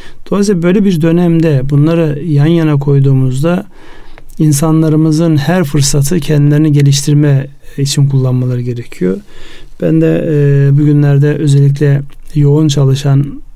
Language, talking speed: Turkish, 95 wpm